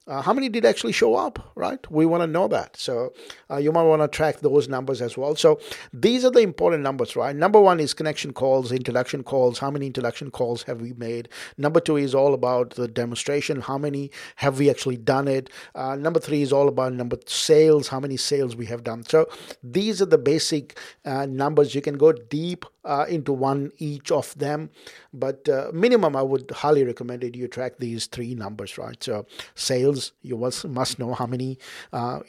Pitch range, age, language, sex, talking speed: 125-155 Hz, 50-69, English, male, 210 wpm